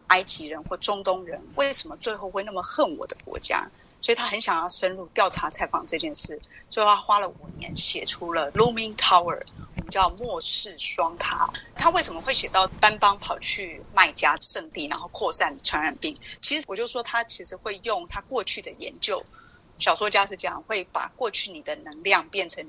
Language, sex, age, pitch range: Chinese, female, 30-49, 185-270 Hz